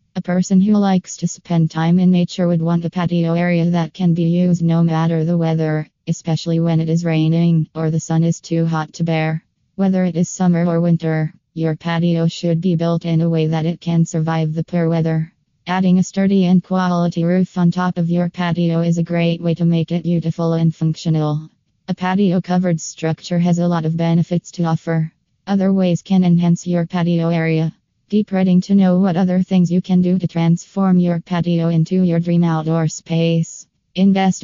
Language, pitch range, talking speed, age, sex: English, 165-180 Hz, 200 wpm, 20-39, female